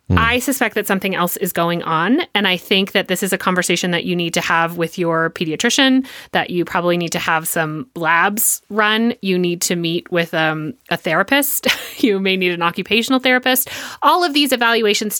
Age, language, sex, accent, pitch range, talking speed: 30-49, English, female, American, 180-235 Hz, 200 wpm